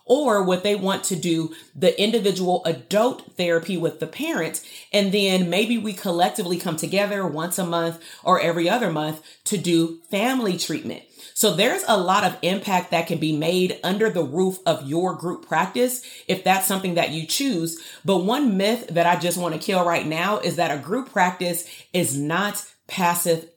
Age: 30-49